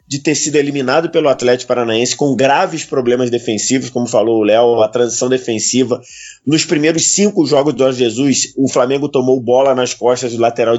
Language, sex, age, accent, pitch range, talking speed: Portuguese, male, 20-39, Brazilian, 115-140 Hz, 185 wpm